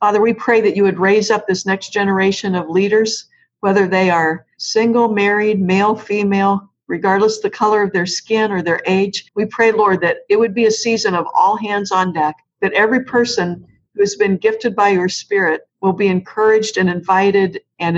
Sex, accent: female, American